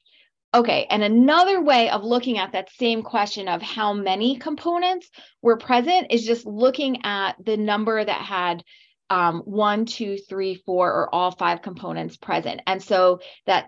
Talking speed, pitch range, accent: 160 wpm, 190-245 Hz, American